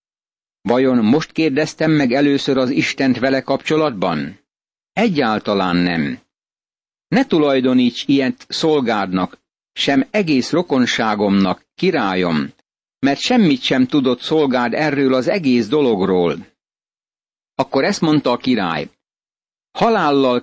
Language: Hungarian